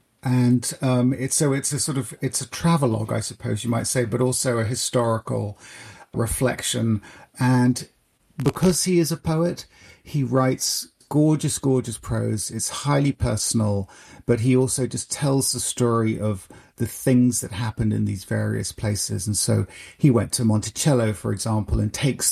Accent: British